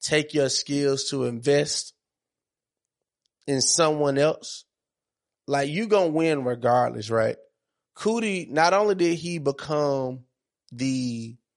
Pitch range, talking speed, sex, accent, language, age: 130-160 Hz, 110 wpm, male, American, English, 20-39